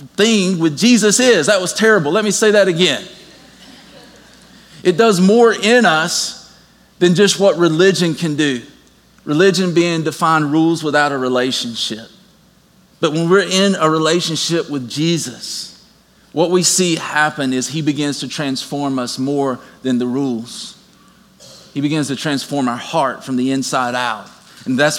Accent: American